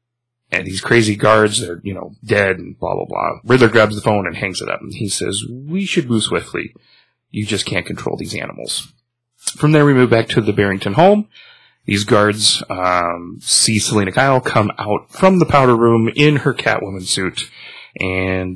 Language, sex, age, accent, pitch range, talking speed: English, male, 30-49, American, 100-125 Hz, 190 wpm